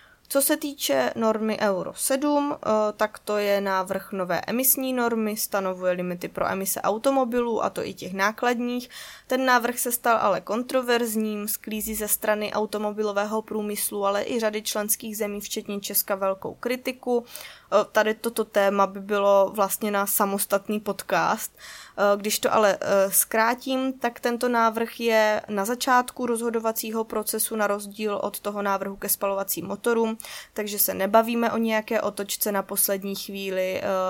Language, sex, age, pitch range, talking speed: Czech, female, 20-39, 190-220 Hz, 145 wpm